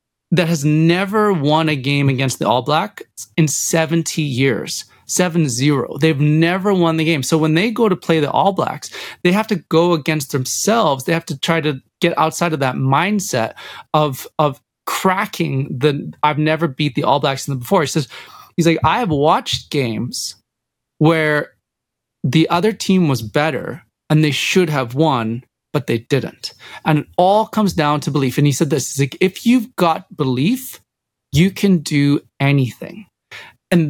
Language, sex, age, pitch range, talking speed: English, male, 30-49, 145-185 Hz, 175 wpm